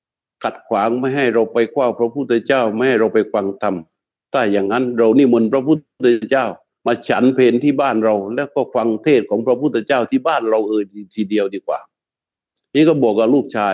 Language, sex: Thai, male